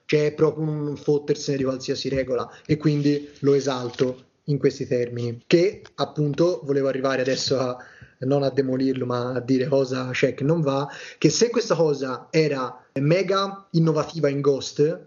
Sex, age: male, 20-39